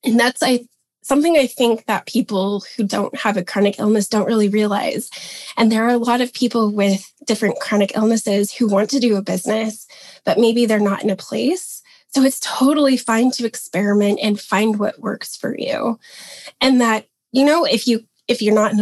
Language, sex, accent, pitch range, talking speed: English, female, American, 205-245 Hz, 200 wpm